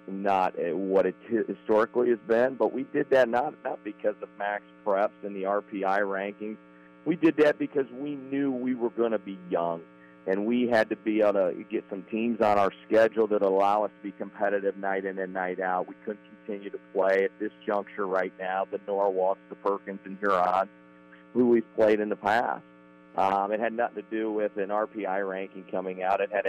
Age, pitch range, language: 50-69, 95-115 Hz, English